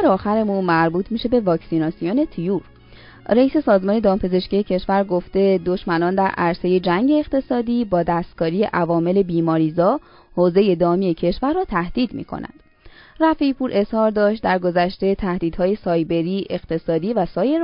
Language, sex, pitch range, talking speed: Persian, female, 170-240 Hz, 125 wpm